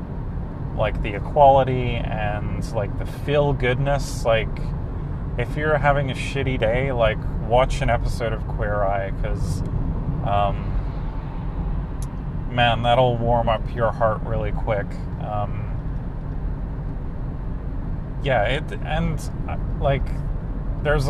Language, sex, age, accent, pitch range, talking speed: English, male, 30-49, American, 110-135 Hz, 105 wpm